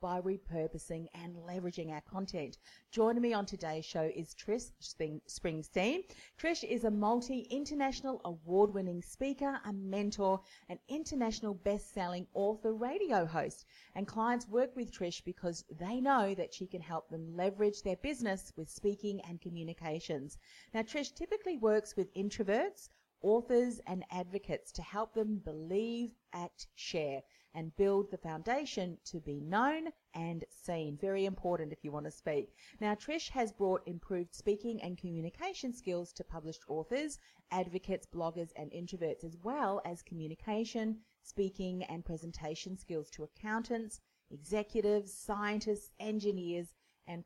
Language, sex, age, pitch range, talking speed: English, female, 40-59, 170-225 Hz, 140 wpm